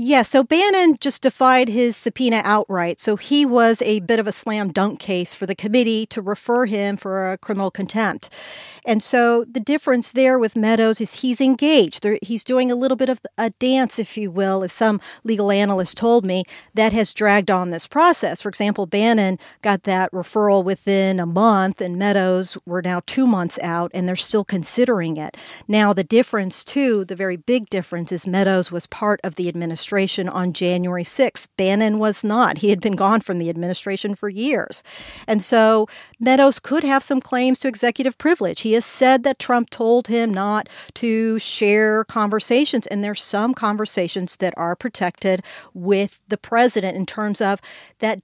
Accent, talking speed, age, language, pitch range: American, 185 wpm, 50-69, English, 190-235 Hz